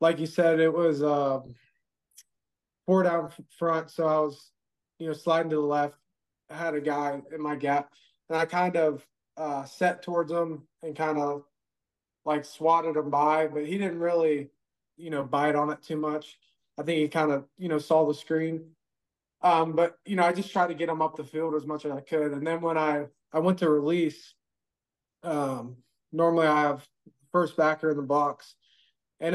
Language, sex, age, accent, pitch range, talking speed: English, male, 20-39, American, 145-165 Hz, 200 wpm